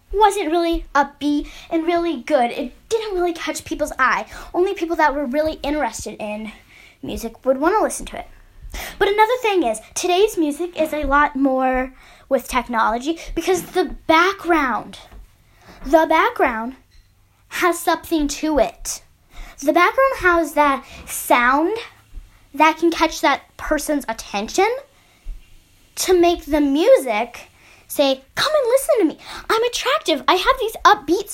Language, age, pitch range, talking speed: English, 10-29, 285-355 Hz, 140 wpm